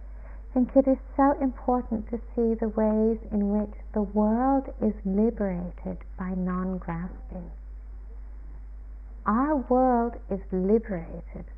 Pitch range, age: 165-235 Hz, 60-79